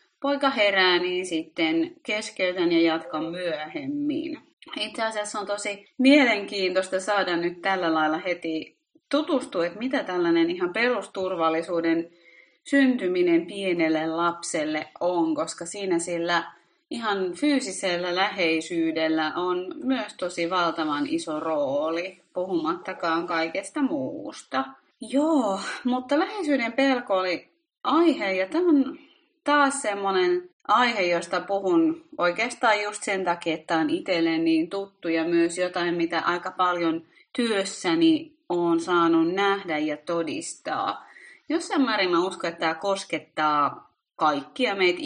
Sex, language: female, Finnish